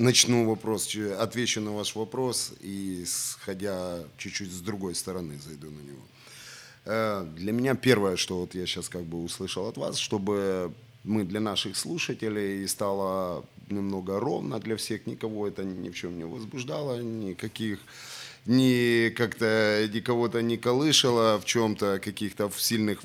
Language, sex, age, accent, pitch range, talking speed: Ukrainian, male, 30-49, native, 95-120 Hz, 145 wpm